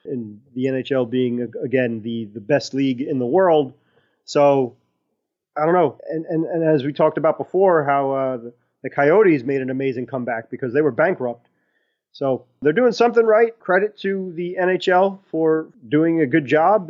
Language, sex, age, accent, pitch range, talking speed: English, male, 30-49, American, 130-165 Hz, 180 wpm